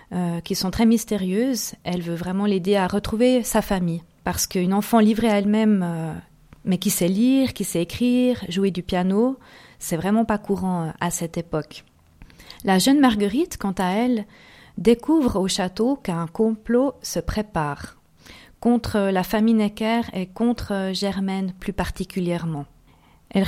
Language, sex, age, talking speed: French, female, 40-59, 150 wpm